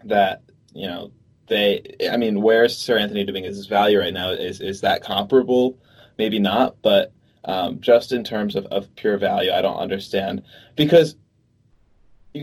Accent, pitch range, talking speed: American, 100-130 Hz, 175 wpm